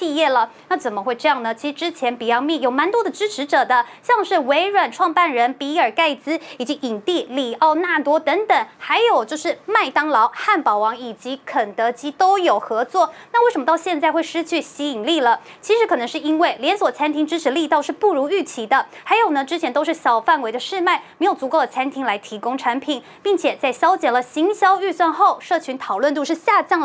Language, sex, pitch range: Chinese, female, 265-355 Hz